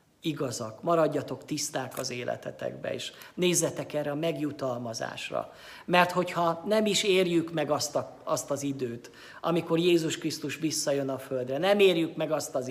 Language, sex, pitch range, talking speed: Hungarian, male, 130-160 Hz, 145 wpm